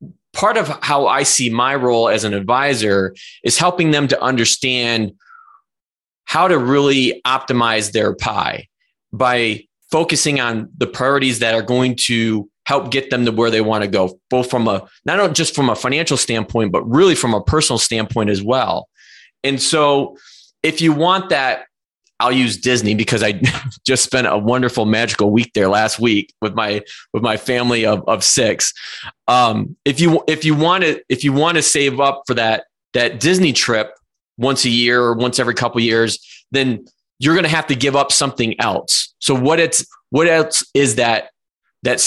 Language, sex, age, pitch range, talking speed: English, male, 20-39, 115-140 Hz, 185 wpm